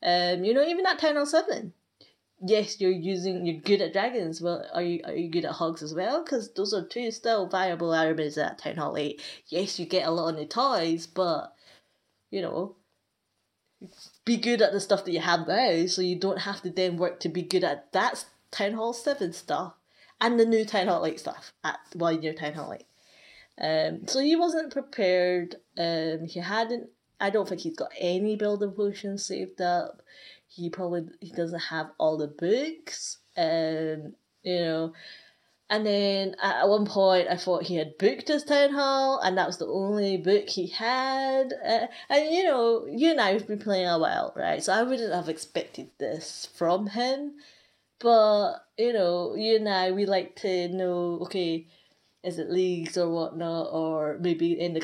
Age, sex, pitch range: 20-39, female, 170-225 Hz